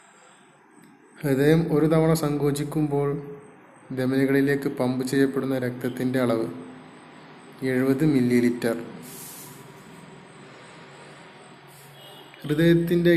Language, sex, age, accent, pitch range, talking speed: Malayalam, male, 30-49, native, 120-140 Hz, 55 wpm